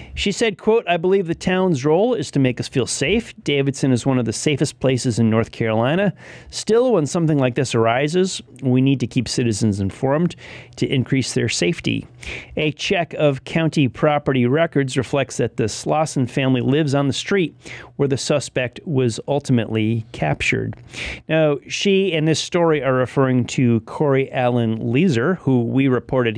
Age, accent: 30-49, American